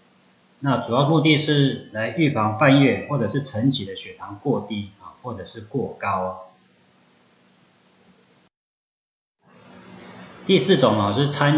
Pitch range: 100-140 Hz